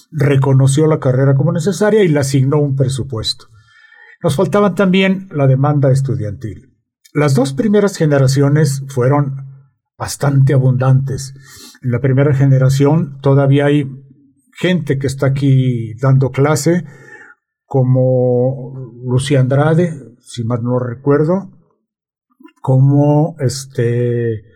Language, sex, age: Spanish, male, 50-69